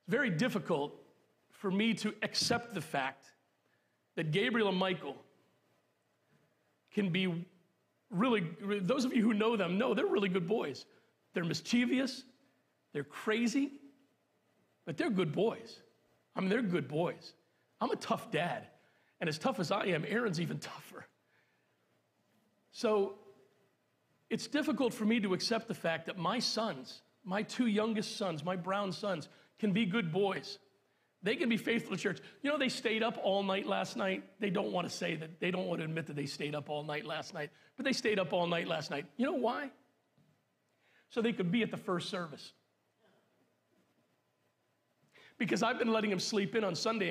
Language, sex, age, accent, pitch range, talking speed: English, male, 40-59, American, 175-225 Hz, 175 wpm